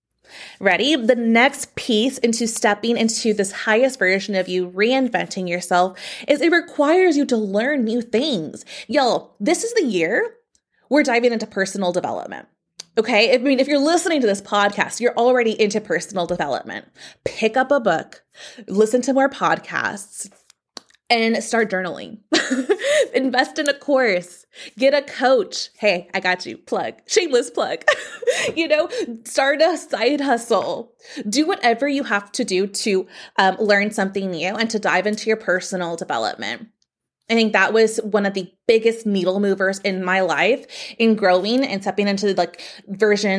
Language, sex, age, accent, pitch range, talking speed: English, female, 20-39, American, 190-255 Hz, 160 wpm